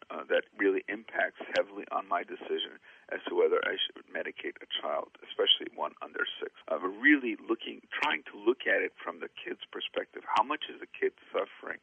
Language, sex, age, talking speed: English, male, 50-69, 195 wpm